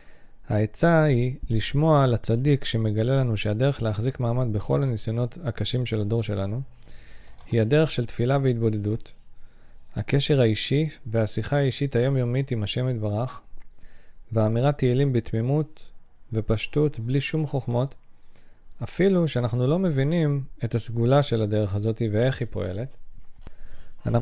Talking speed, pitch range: 120 wpm, 110-140 Hz